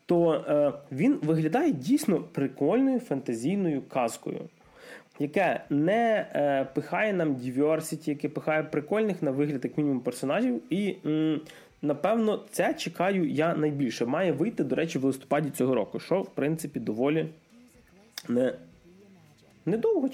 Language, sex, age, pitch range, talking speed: Ukrainian, male, 20-39, 140-185 Hz, 125 wpm